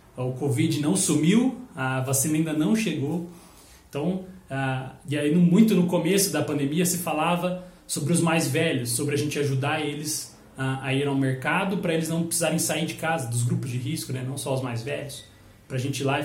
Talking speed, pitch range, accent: 215 wpm, 135-165 Hz, Brazilian